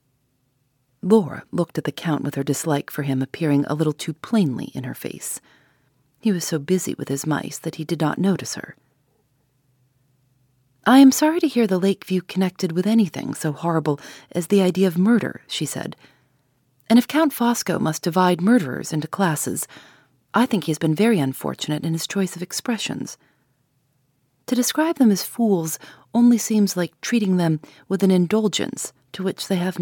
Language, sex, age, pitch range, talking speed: English, female, 40-59, 140-200 Hz, 180 wpm